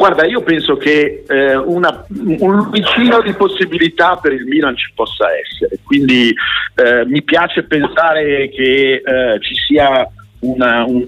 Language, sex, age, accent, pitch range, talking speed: Italian, male, 50-69, native, 120-155 Hz, 145 wpm